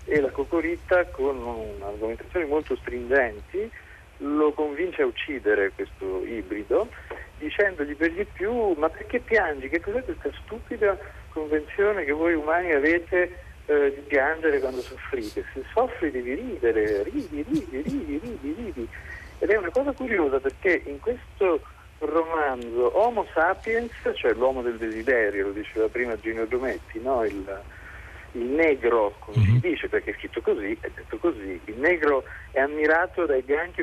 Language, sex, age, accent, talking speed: Italian, male, 50-69, native, 145 wpm